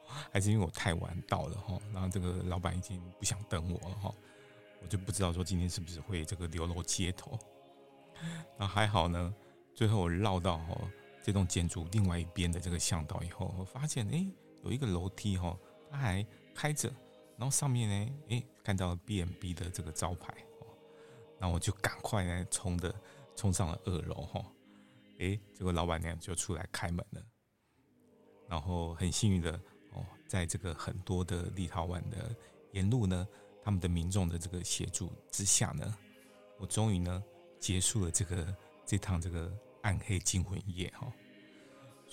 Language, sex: Chinese, male